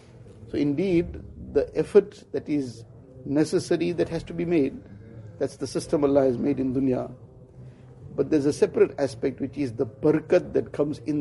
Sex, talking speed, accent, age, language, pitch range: male, 170 wpm, Indian, 60-79, English, 120-155 Hz